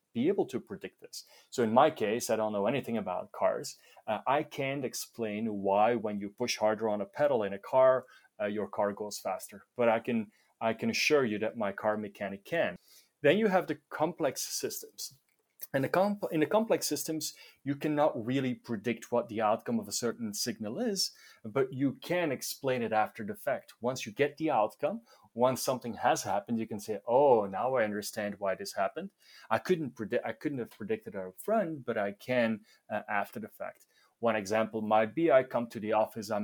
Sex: male